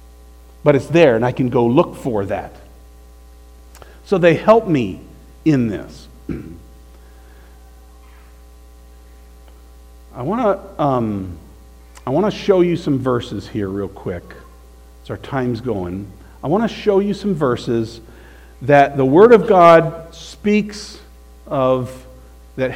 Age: 50-69